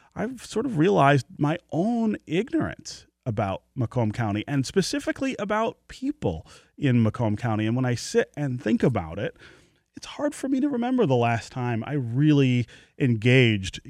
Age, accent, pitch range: 30-49, American, 110-145 Hz